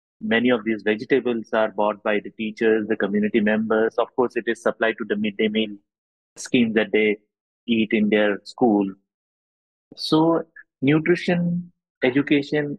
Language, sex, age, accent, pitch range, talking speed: English, male, 30-49, Indian, 105-125 Hz, 145 wpm